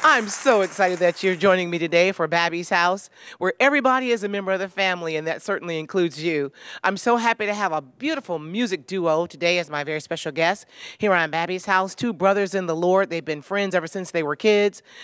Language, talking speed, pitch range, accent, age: English, 225 wpm, 170-200 Hz, American, 40-59